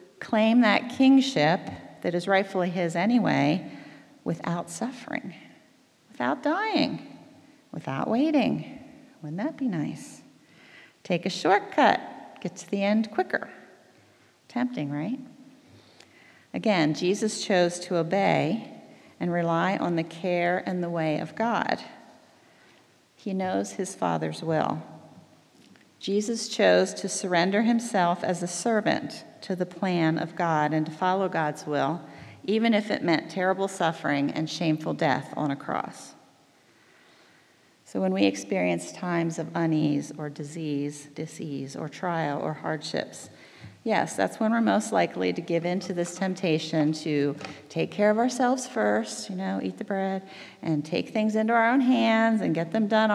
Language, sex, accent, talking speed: English, female, American, 140 wpm